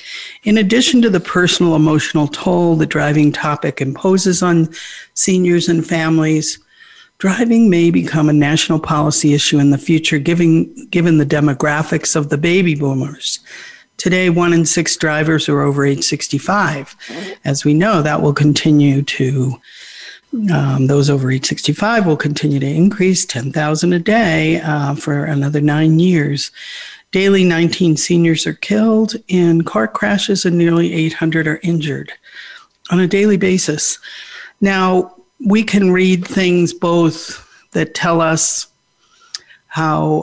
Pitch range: 150-180 Hz